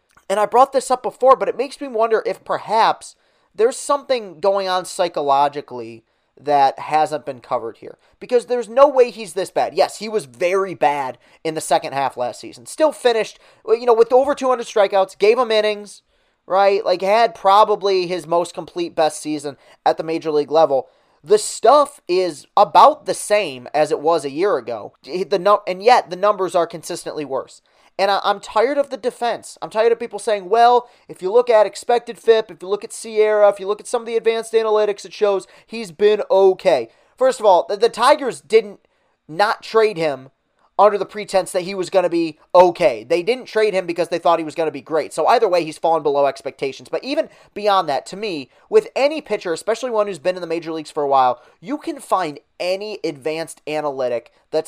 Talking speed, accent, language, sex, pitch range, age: 205 wpm, American, English, male, 165-235 Hz, 30-49